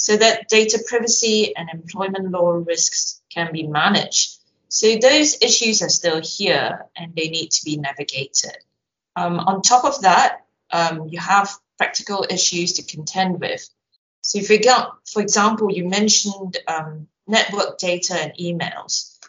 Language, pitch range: English, 165-205 Hz